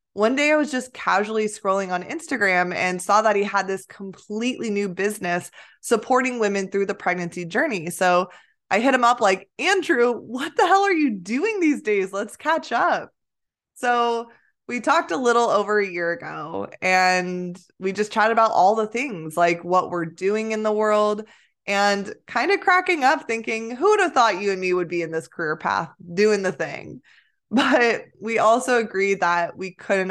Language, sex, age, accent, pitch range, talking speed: English, female, 20-39, American, 185-230 Hz, 190 wpm